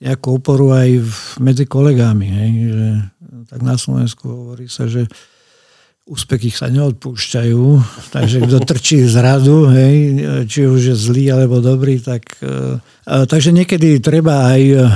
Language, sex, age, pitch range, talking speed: Slovak, male, 50-69, 120-135 Hz, 135 wpm